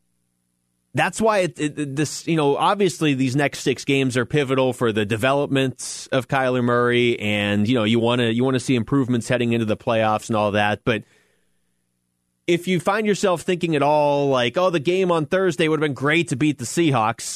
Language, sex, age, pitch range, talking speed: English, male, 30-49, 100-150 Hz, 205 wpm